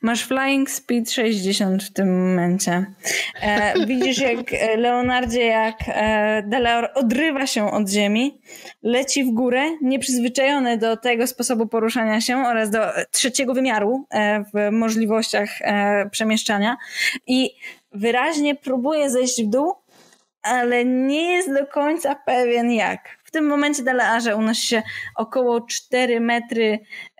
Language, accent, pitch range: Polish, native, 210-260 Hz